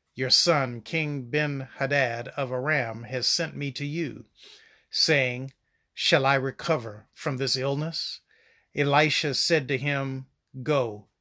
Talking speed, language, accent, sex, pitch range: 125 wpm, English, American, male, 130-155 Hz